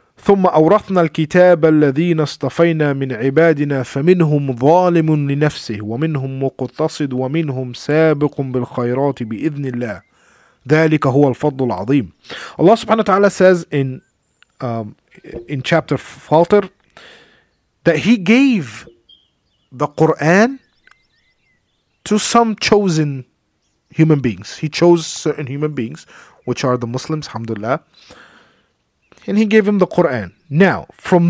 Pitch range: 130-170 Hz